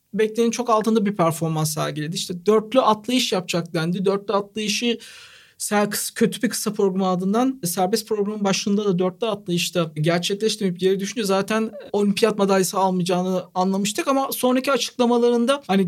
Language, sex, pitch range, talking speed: Turkish, male, 190-240 Hz, 135 wpm